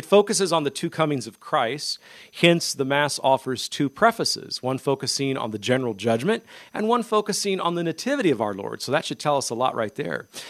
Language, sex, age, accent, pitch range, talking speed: English, male, 40-59, American, 120-170 Hz, 215 wpm